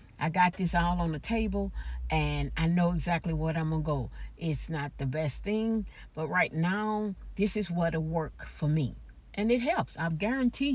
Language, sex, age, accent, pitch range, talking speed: English, female, 60-79, American, 155-220 Hz, 190 wpm